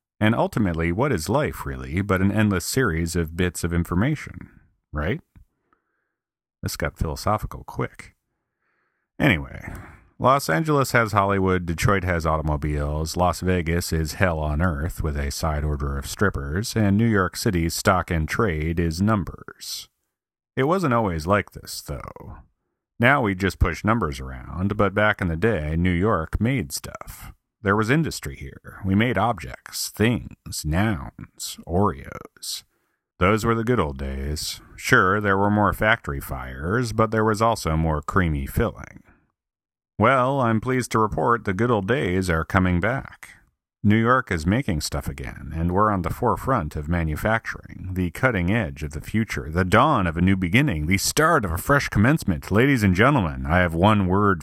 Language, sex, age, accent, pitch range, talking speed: English, male, 40-59, American, 80-110 Hz, 165 wpm